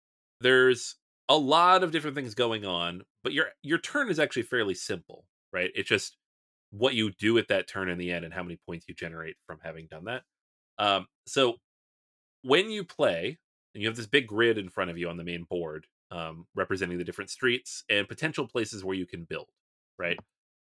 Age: 30-49